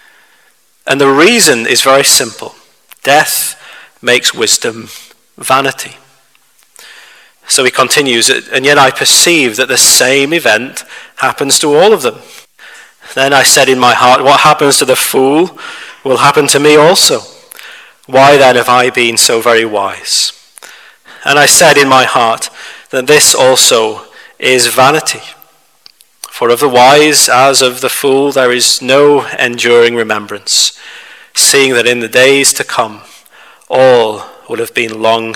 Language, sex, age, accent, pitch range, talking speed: English, male, 30-49, British, 120-140 Hz, 145 wpm